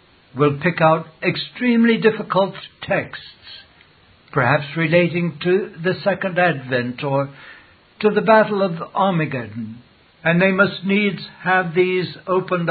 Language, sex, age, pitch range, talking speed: English, male, 60-79, 140-185 Hz, 120 wpm